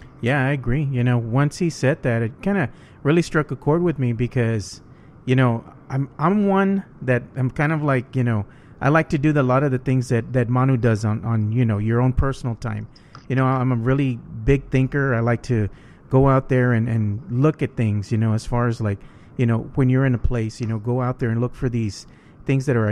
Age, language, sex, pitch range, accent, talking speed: 30-49, English, male, 115-135 Hz, American, 250 wpm